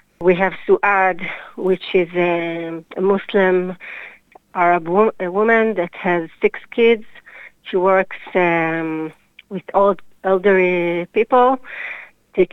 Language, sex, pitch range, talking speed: English, female, 175-210 Hz, 110 wpm